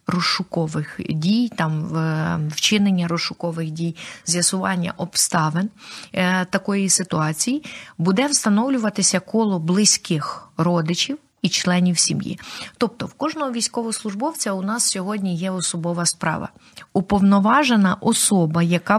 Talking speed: 100 wpm